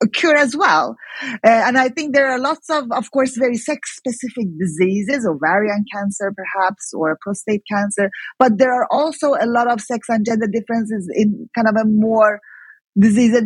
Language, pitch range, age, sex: English, 185-255 Hz, 20-39, female